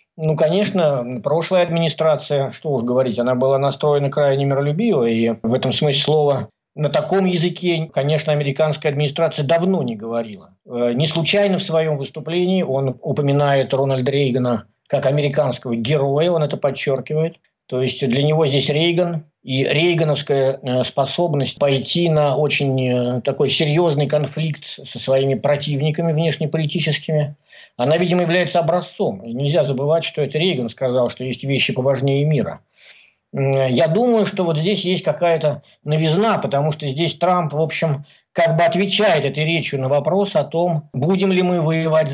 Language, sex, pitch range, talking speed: Russian, male, 135-170 Hz, 145 wpm